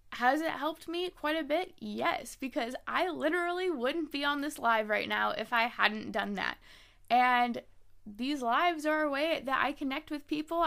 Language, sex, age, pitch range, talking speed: English, female, 10-29, 230-305 Hz, 190 wpm